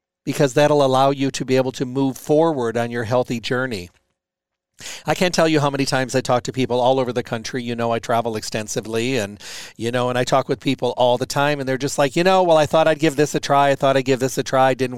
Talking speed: 270 wpm